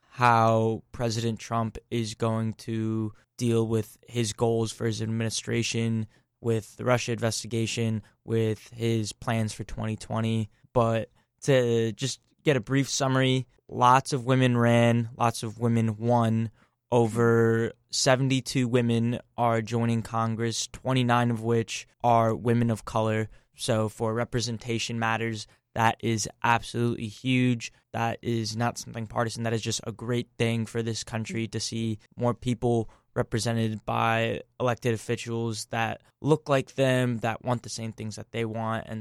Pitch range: 115-125 Hz